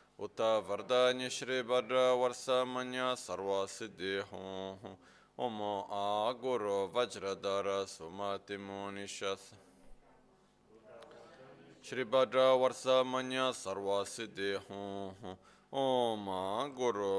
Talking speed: 60 wpm